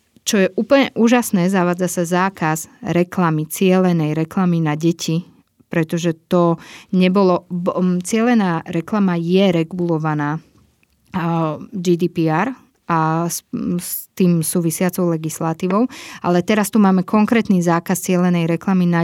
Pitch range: 165-190 Hz